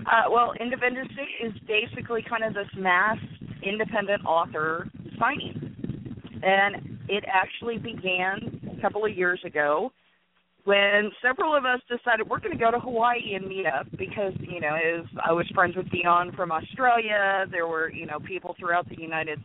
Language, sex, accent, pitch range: English, female, American, 175-215 Hz